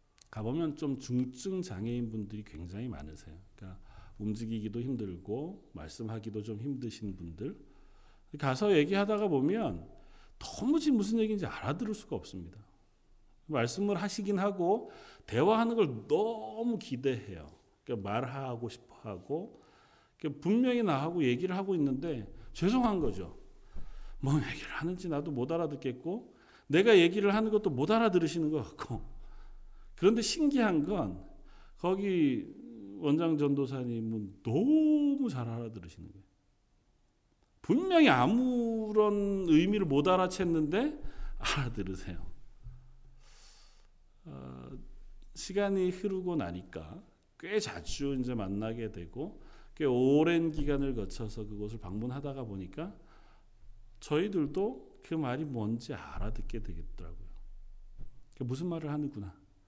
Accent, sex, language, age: native, male, Korean, 40-59